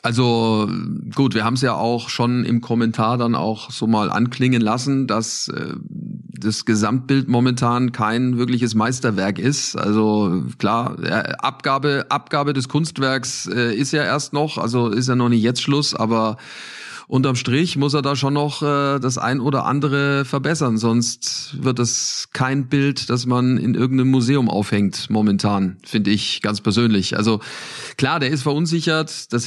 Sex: male